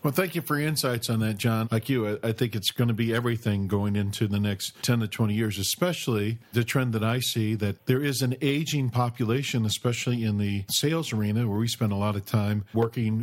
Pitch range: 110-135 Hz